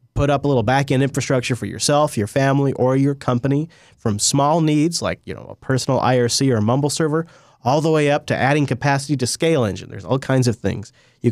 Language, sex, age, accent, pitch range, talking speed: English, male, 30-49, American, 115-150 Hz, 210 wpm